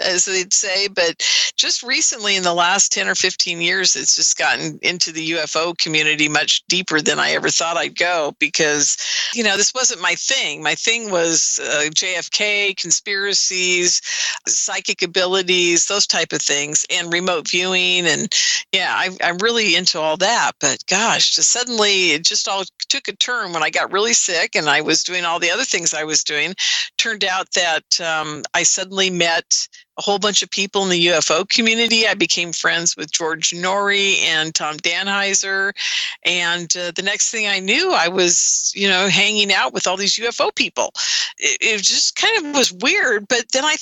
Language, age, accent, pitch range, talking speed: English, 50-69, American, 170-230 Hz, 185 wpm